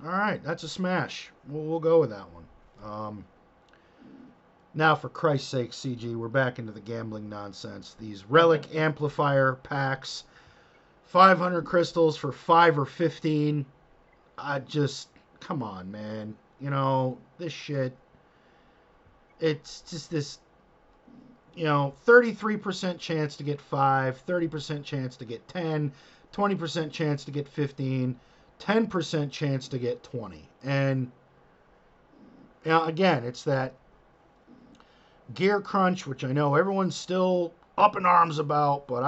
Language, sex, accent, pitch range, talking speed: English, male, American, 130-170 Hz, 130 wpm